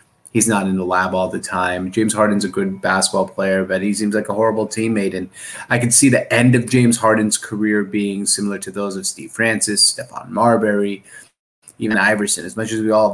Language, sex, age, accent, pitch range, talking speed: English, male, 30-49, American, 95-120 Hz, 215 wpm